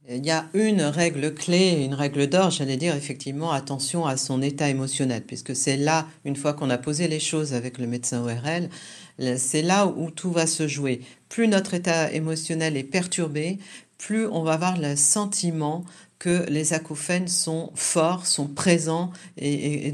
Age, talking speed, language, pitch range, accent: 50-69, 180 wpm, French, 150-185 Hz, French